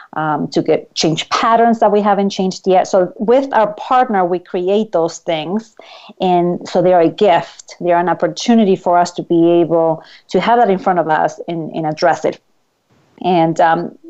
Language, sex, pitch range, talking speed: English, female, 170-205 Hz, 195 wpm